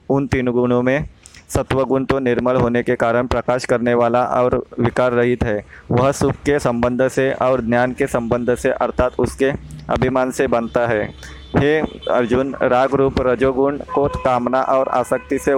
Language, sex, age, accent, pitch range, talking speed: Hindi, male, 20-39, native, 120-135 Hz, 170 wpm